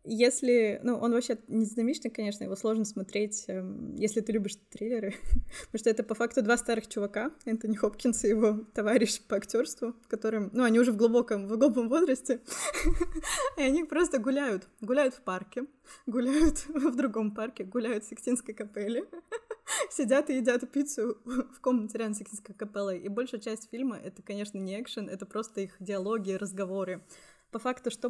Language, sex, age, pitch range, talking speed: Russian, female, 20-39, 200-245 Hz, 160 wpm